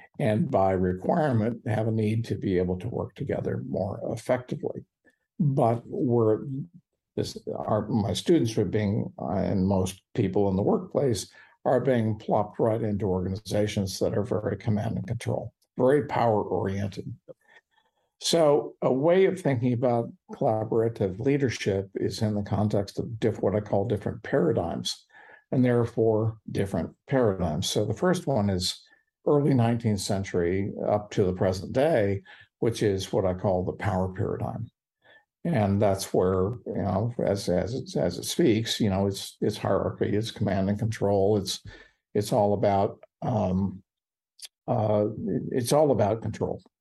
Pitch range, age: 95-115 Hz, 50-69